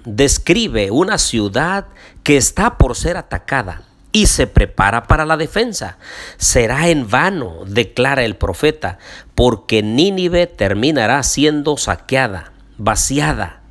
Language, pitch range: Spanish, 105-155 Hz